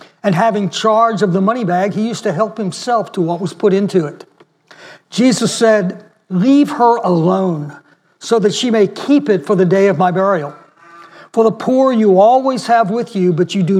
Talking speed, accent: 200 wpm, American